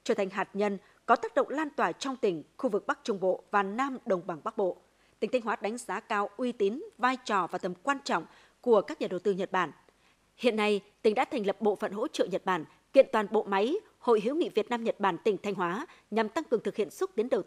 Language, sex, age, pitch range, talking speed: Vietnamese, female, 20-39, 195-265 Hz, 265 wpm